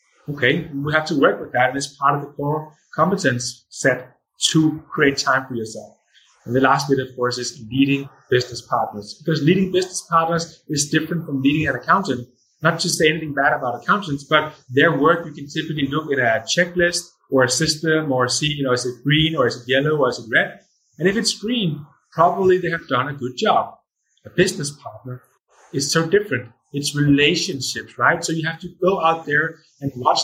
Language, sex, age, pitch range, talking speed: English, male, 30-49, 130-160 Hz, 205 wpm